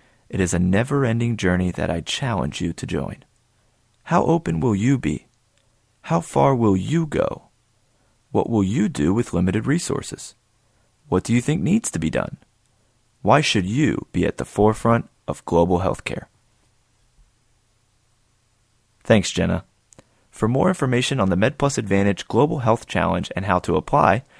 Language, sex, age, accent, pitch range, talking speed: English, male, 30-49, American, 95-130 Hz, 155 wpm